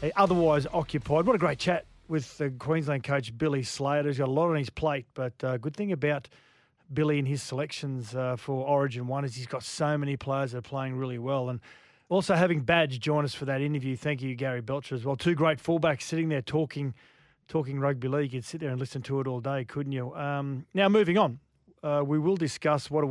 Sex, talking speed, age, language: male, 230 wpm, 30-49, English